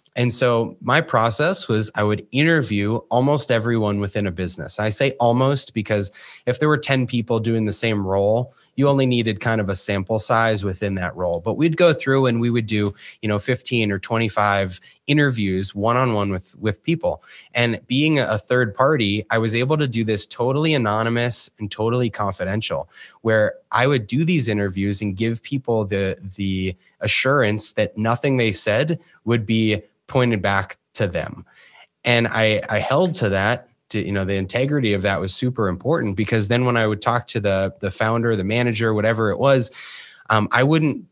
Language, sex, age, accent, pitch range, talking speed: English, male, 20-39, American, 105-130 Hz, 185 wpm